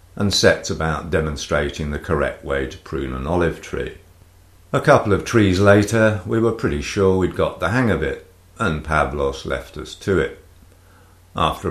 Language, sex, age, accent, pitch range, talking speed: English, male, 50-69, British, 80-95 Hz, 175 wpm